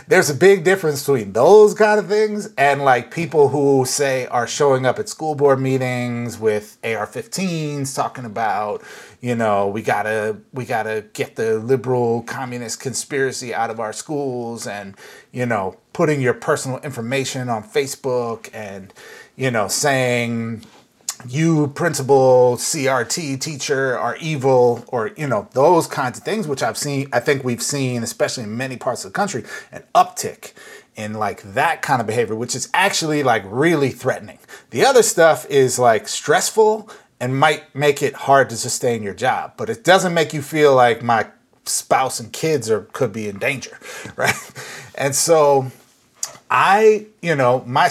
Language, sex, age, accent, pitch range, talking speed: English, male, 30-49, American, 120-155 Hz, 170 wpm